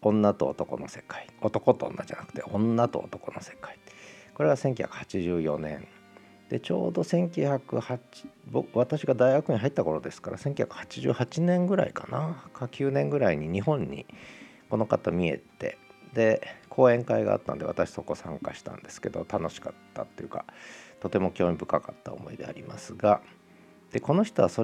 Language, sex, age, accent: Japanese, male, 50-69, native